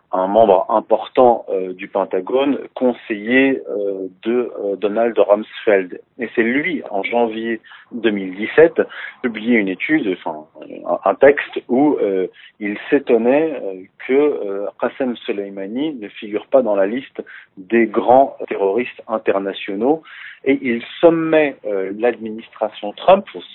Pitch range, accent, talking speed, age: 105-155 Hz, French, 125 wpm, 40-59